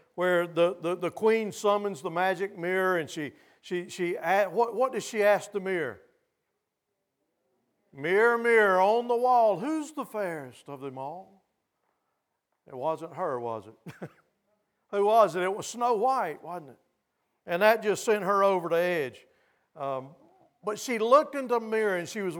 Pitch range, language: 170-225 Hz, English